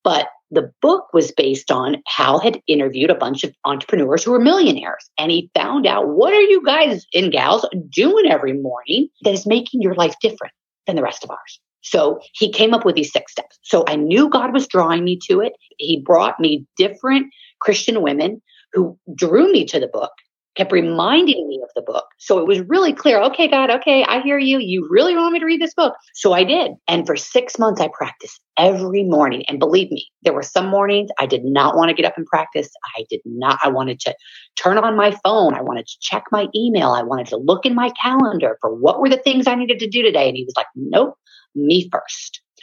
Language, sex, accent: English, female, American